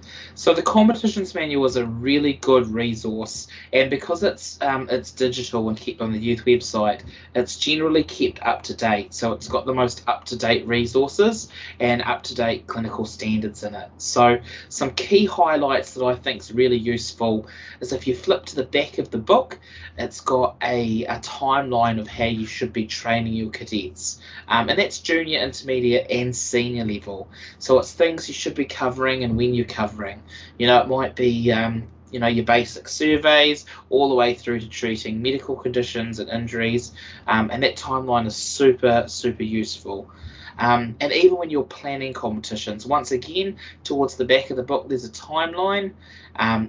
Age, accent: 20-39, Australian